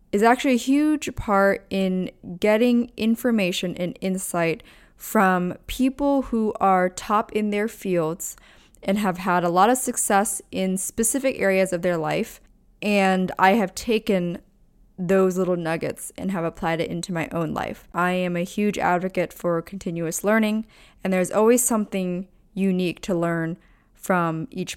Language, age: English, 20-39